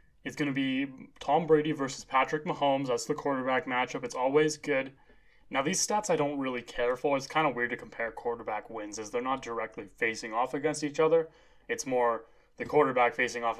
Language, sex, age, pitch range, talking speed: English, male, 20-39, 120-155 Hz, 210 wpm